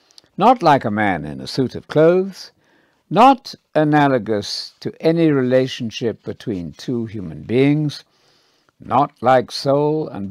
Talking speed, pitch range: 130 wpm, 115-150 Hz